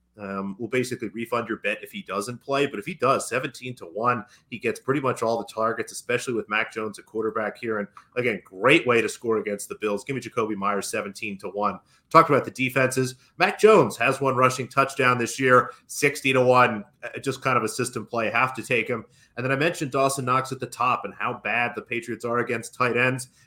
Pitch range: 110-130 Hz